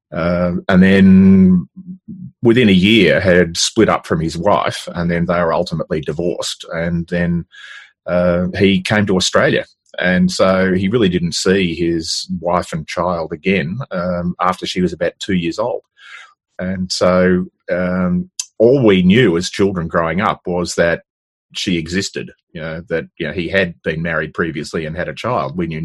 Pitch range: 85-100 Hz